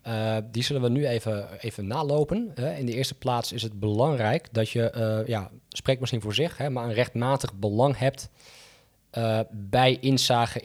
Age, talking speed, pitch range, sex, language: 20-39, 185 wpm, 110-125 Hz, male, Dutch